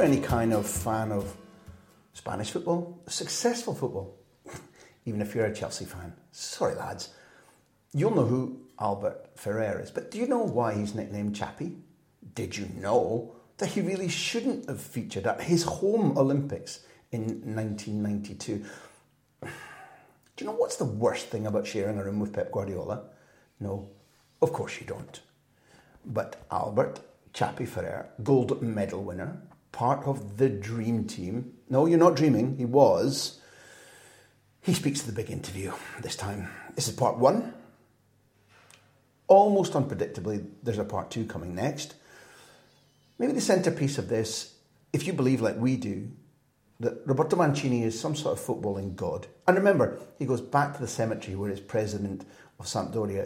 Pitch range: 105-145 Hz